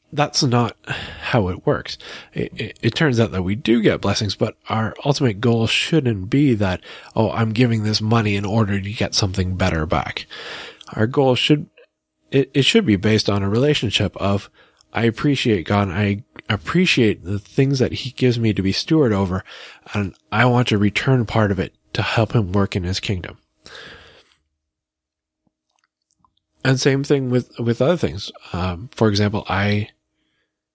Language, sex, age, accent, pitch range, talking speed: English, male, 20-39, American, 100-125 Hz, 170 wpm